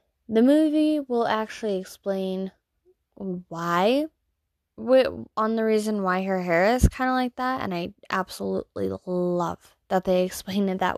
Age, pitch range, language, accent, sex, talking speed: 10-29, 190-230 Hz, English, American, female, 140 wpm